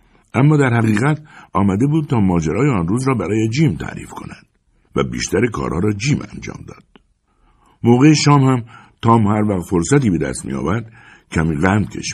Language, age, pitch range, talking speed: Persian, 60-79, 80-125 Hz, 165 wpm